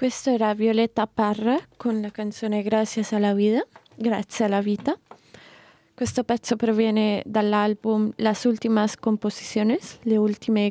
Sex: female